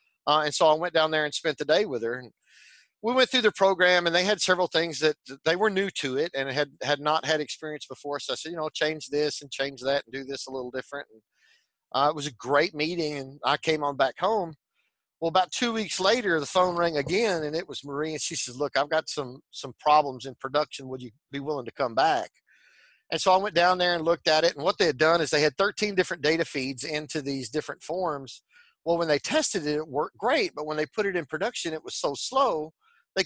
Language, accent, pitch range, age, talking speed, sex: English, American, 140-175 Hz, 40-59, 260 wpm, male